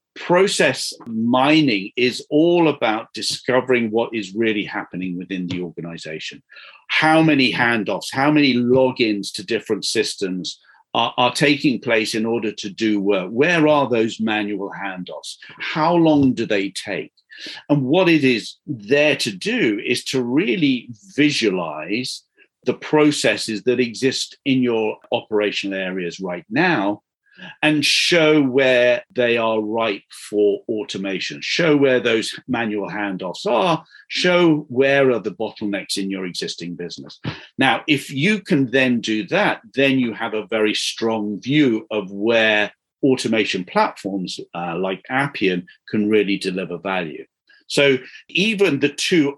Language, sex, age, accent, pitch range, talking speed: English, male, 50-69, British, 105-145 Hz, 140 wpm